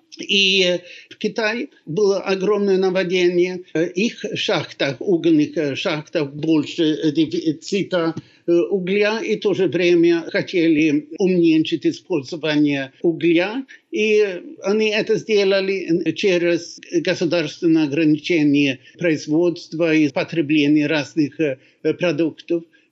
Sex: male